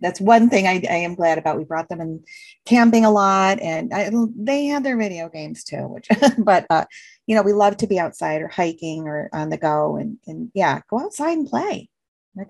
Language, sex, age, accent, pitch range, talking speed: English, female, 30-49, American, 155-200 Hz, 225 wpm